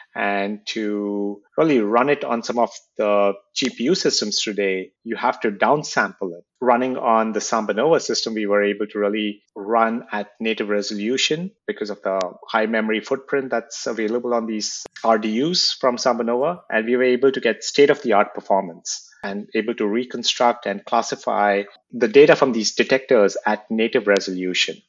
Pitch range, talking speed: 105-130 Hz, 160 wpm